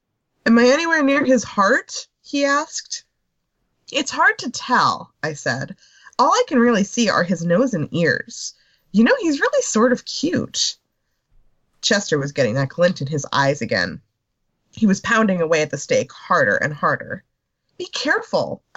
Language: English